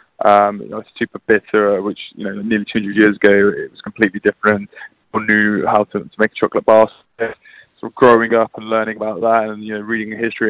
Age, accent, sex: 20-39, British, male